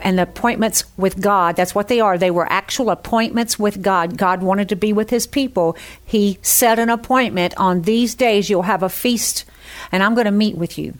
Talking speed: 220 wpm